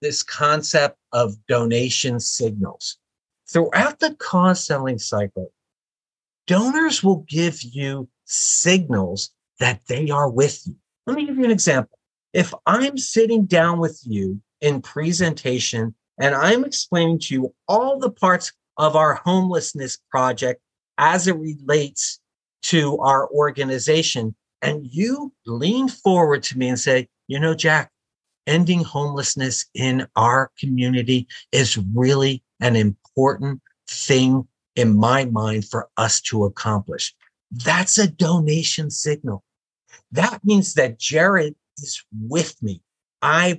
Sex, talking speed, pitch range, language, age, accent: male, 125 wpm, 125-165 Hz, English, 50-69, American